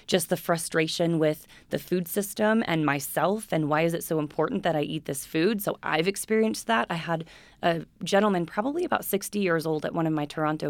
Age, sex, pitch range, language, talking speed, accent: 20-39, female, 150-180 Hz, English, 215 wpm, American